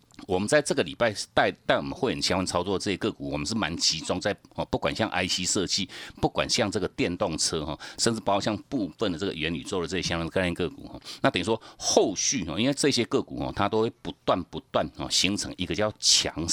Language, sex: Chinese, male